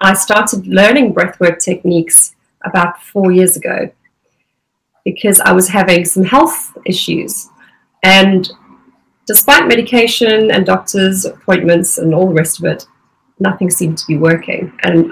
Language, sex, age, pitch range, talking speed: English, female, 30-49, 170-205 Hz, 135 wpm